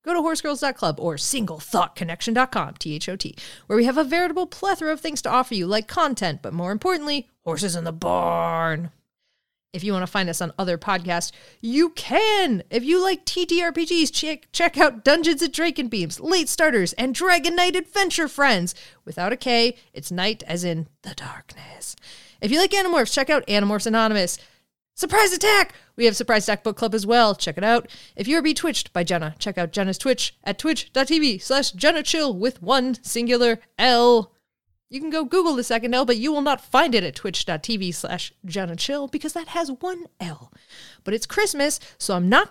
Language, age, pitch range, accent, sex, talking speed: English, 30-49, 180-300 Hz, American, female, 185 wpm